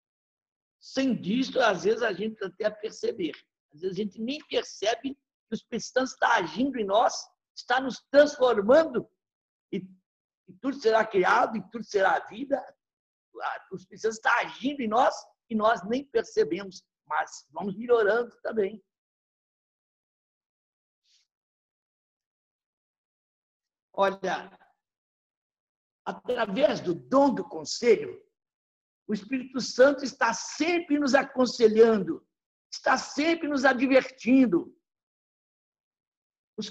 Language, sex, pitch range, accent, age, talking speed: Portuguese, male, 205-275 Hz, Brazilian, 60-79, 105 wpm